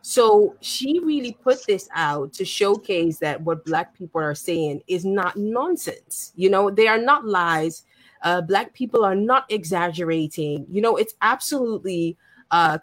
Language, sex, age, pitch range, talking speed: English, female, 20-39, 160-220 Hz, 160 wpm